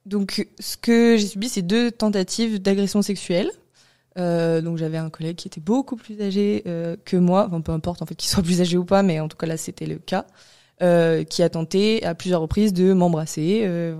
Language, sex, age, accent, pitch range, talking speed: French, female, 20-39, French, 165-200 Hz, 225 wpm